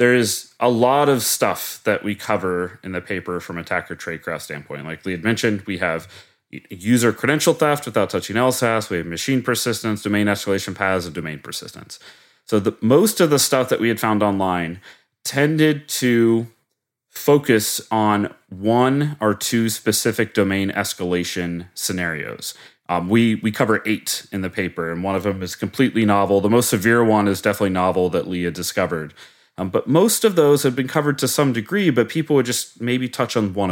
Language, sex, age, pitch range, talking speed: English, male, 30-49, 95-125 Hz, 185 wpm